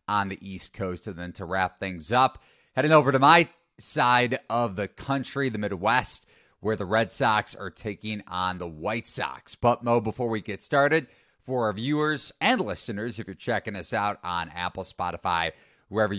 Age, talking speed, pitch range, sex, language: 30-49, 185 wpm, 100-135 Hz, male, English